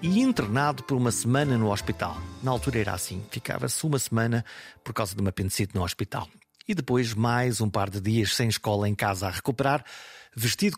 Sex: male